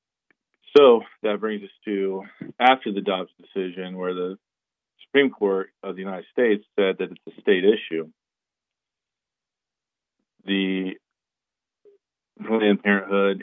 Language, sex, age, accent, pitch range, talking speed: English, male, 40-59, American, 90-100 Hz, 115 wpm